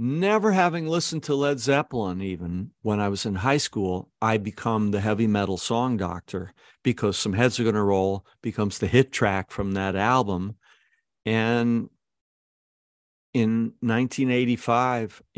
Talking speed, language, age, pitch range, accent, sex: 140 wpm, English, 50-69, 100-120 Hz, American, male